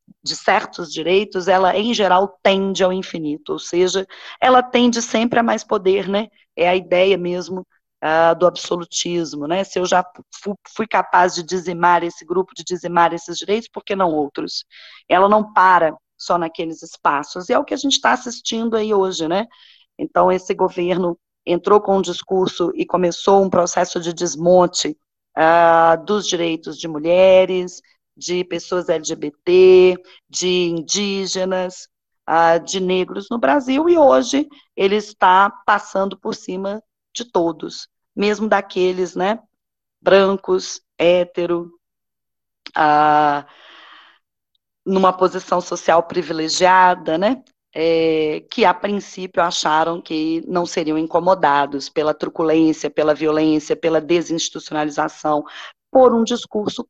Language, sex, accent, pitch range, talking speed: Portuguese, female, Brazilian, 165-195 Hz, 130 wpm